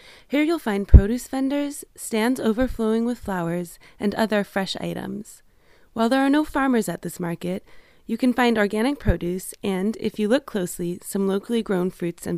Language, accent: English, American